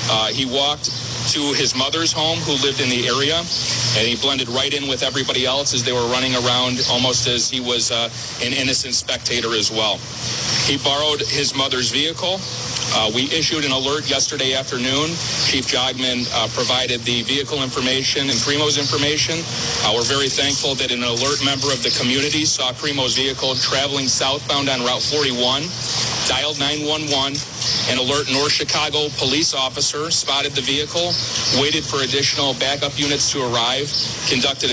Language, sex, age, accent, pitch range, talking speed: English, male, 40-59, American, 125-145 Hz, 165 wpm